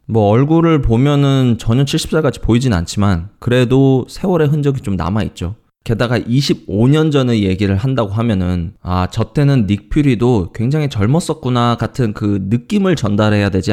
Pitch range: 100-140 Hz